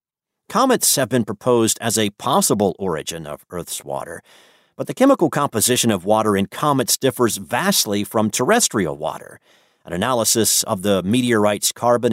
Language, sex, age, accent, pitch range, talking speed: English, male, 50-69, American, 105-130 Hz, 150 wpm